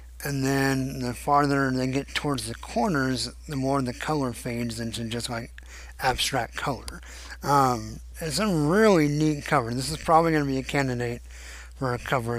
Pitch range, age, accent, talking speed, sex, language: 100-145 Hz, 50-69, American, 175 wpm, male, English